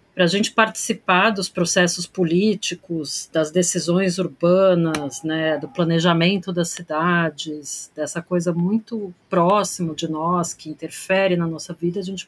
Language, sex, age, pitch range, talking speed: Portuguese, female, 50-69, 165-200 Hz, 135 wpm